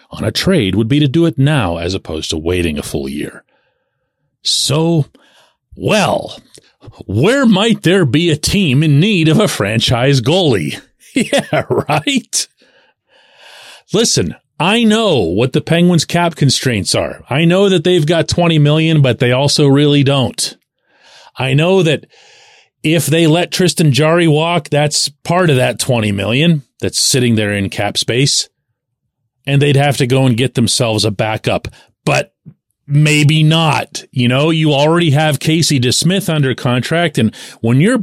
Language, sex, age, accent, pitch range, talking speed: English, male, 40-59, American, 120-165 Hz, 155 wpm